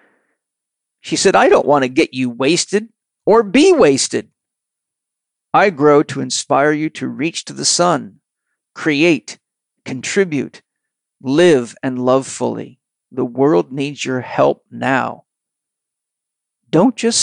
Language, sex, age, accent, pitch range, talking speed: English, male, 50-69, American, 130-150 Hz, 125 wpm